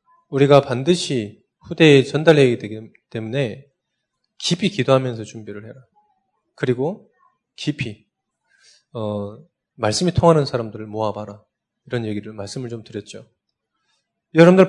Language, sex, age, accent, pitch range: Korean, male, 20-39, native, 125-190 Hz